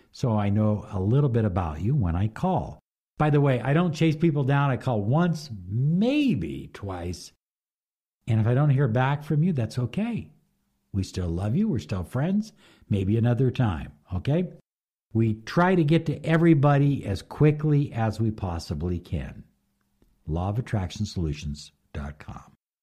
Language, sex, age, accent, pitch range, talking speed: English, male, 60-79, American, 95-140 Hz, 150 wpm